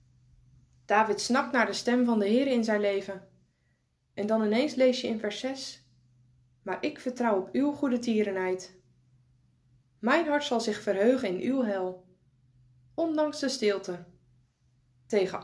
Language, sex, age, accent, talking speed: Dutch, female, 20-39, Dutch, 150 wpm